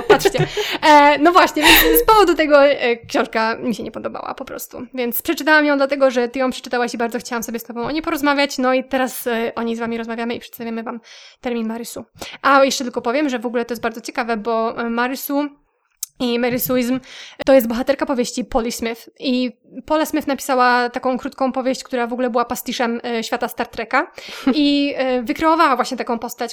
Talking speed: 195 wpm